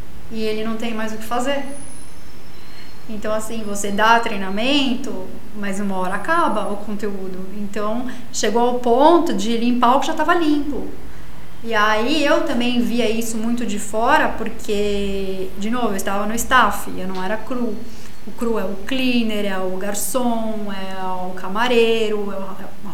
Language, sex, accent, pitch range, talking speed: Portuguese, female, Brazilian, 215-265 Hz, 165 wpm